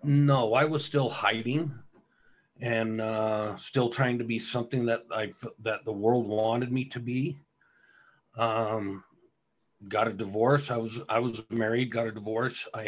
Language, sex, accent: English, male, American